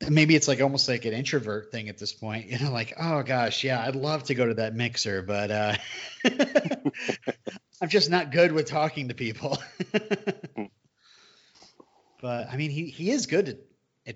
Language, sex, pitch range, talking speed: English, male, 110-145 Hz, 180 wpm